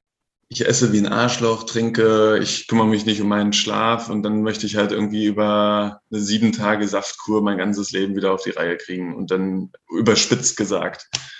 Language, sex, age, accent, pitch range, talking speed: German, male, 20-39, German, 105-120 Hz, 190 wpm